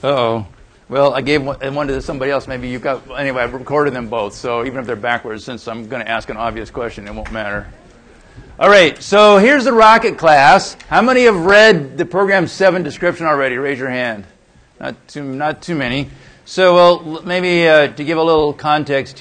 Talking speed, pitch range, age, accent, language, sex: 205 wpm, 135-175 Hz, 50-69, American, English, male